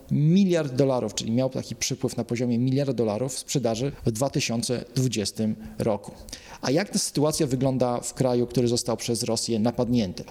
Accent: native